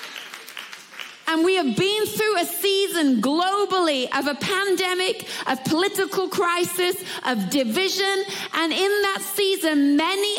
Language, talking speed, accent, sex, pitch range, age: English, 120 wpm, British, female, 310-370 Hz, 30-49